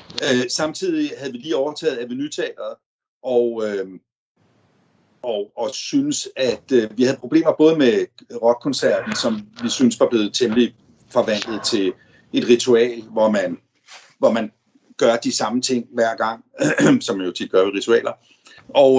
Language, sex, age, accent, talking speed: Danish, male, 60-79, native, 150 wpm